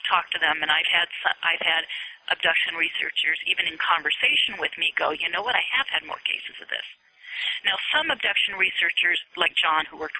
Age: 40-59